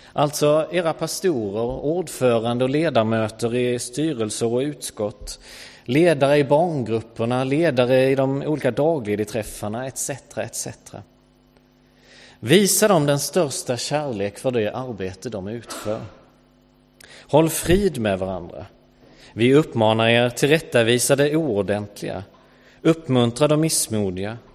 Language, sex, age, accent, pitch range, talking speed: English, male, 30-49, Swedish, 110-145 Hz, 110 wpm